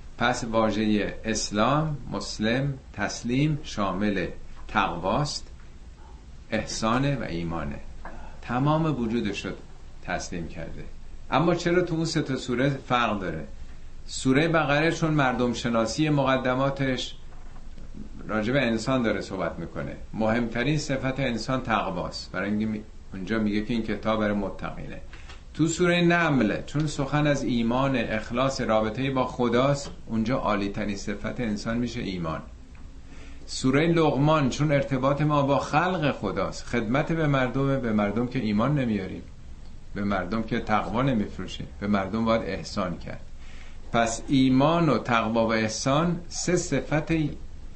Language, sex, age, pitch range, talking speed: Persian, male, 50-69, 100-135 Hz, 125 wpm